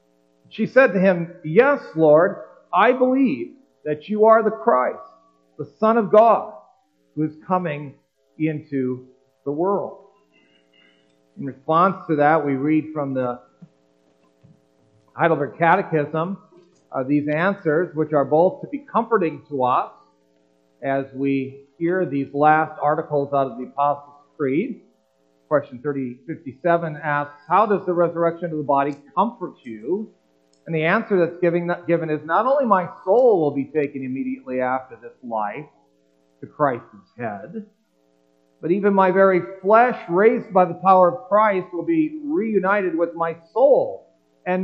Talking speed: 140 wpm